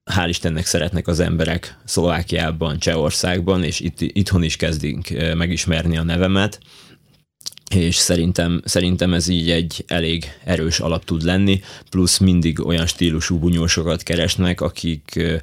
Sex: male